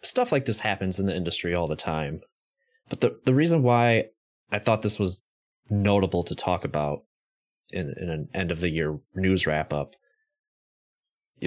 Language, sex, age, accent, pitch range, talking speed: English, male, 20-39, American, 85-125 Hz, 155 wpm